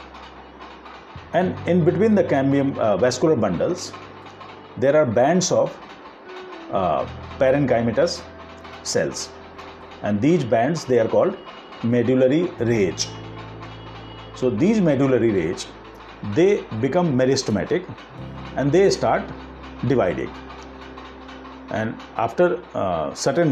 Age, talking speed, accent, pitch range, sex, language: 50-69, 95 wpm, native, 85-145 Hz, male, Hindi